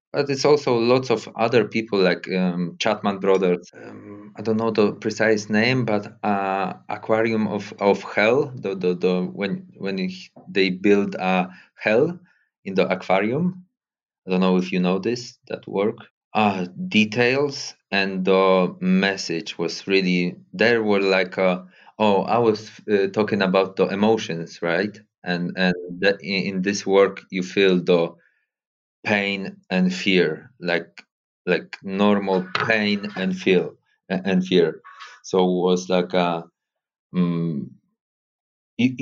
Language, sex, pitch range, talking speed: English, male, 90-110 Hz, 145 wpm